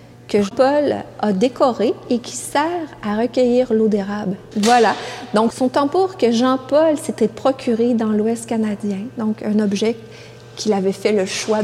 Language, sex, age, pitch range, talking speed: French, female, 40-59, 205-250 Hz, 155 wpm